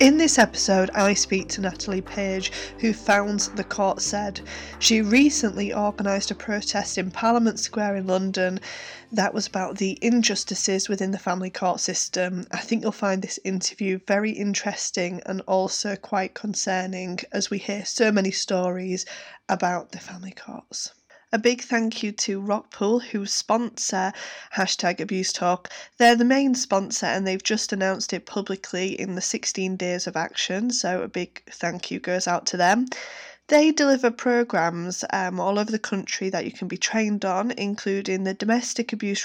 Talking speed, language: 165 wpm, English